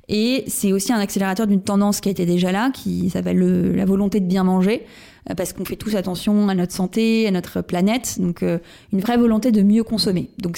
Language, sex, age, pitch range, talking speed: French, female, 20-39, 185-220 Hz, 220 wpm